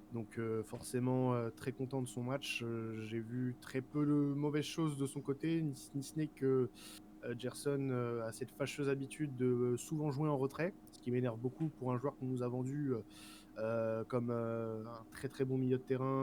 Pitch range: 115-140 Hz